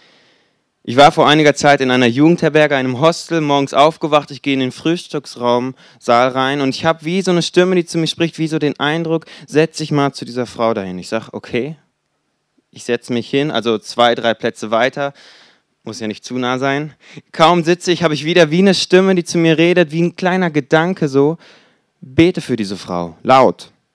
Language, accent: German, German